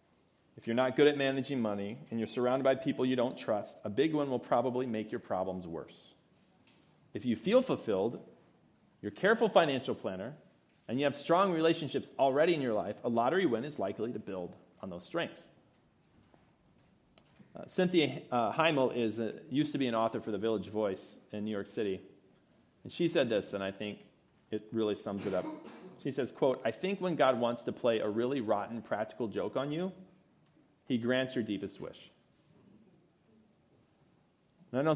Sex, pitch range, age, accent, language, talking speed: male, 105-135 Hz, 40-59, American, English, 185 wpm